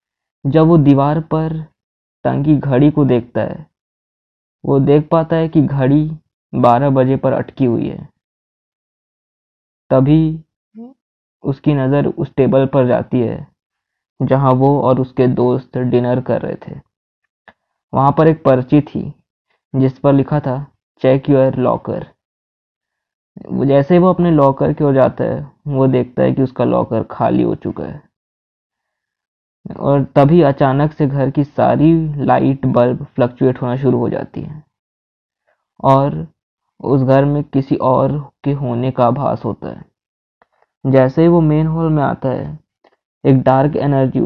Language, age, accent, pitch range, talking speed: Hindi, 20-39, native, 130-145 Hz, 145 wpm